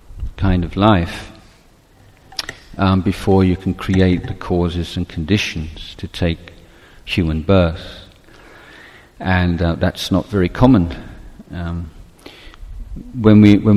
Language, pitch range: Thai, 85-100 Hz